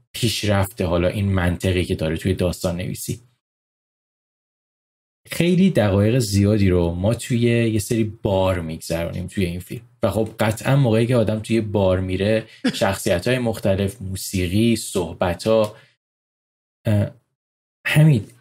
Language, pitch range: Persian, 95-125 Hz